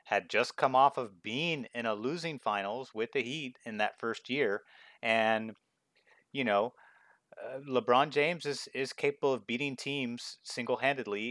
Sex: male